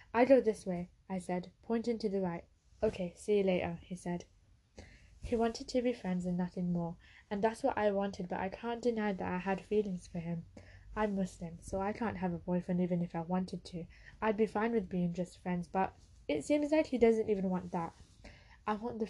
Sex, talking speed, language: female, 225 wpm, English